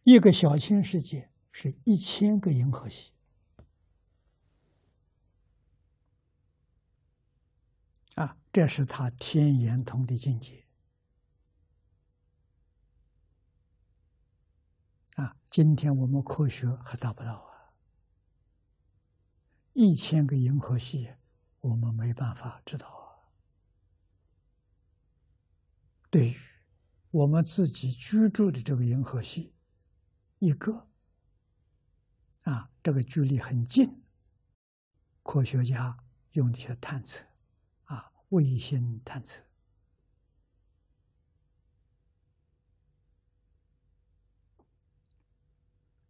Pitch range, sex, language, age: 85-135 Hz, male, Chinese, 60-79